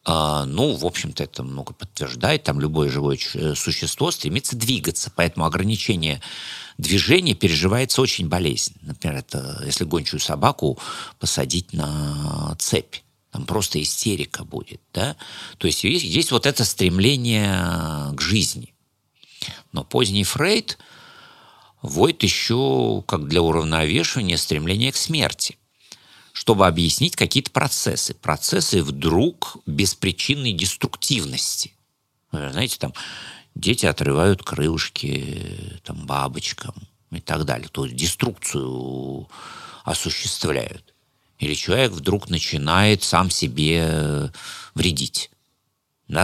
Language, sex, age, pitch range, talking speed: Russian, male, 50-69, 75-105 Hz, 100 wpm